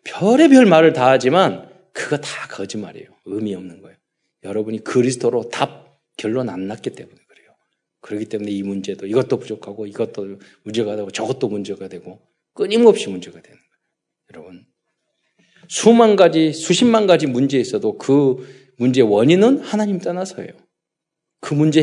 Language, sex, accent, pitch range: Korean, male, native, 110-185 Hz